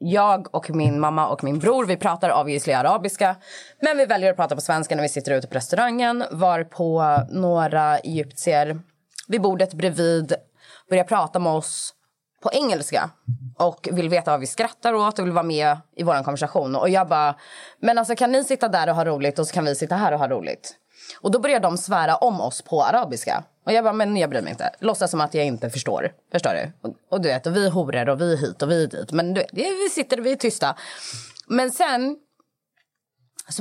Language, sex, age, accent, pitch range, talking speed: Swedish, female, 20-39, native, 145-200 Hz, 215 wpm